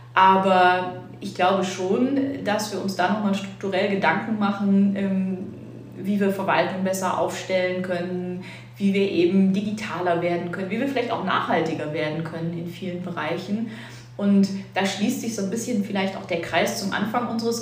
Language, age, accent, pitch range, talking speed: German, 30-49, German, 175-205 Hz, 165 wpm